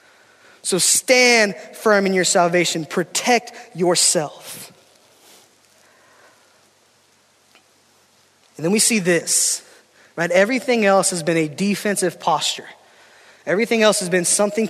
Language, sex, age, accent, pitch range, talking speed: English, male, 20-39, American, 170-220 Hz, 105 wpm